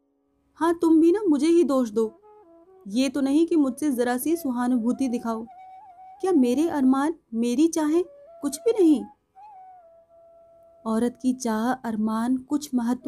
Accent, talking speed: native, 140 wpm